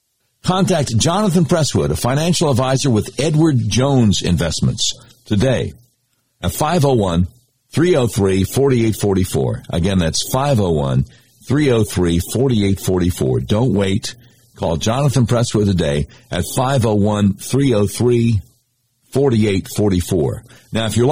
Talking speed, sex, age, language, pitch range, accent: 75 wpm, male, 60-79, English, 95-130 Hz, American